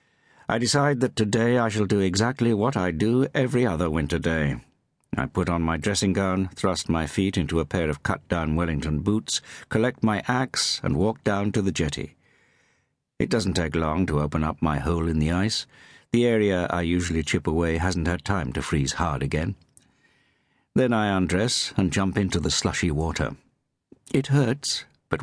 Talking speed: 185 wpm